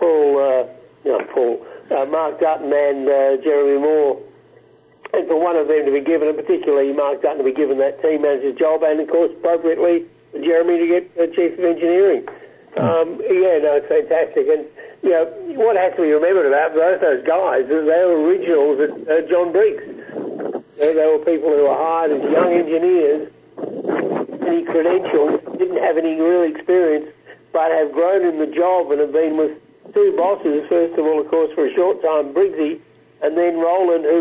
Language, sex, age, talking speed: English, male, 60-79, 200 wpm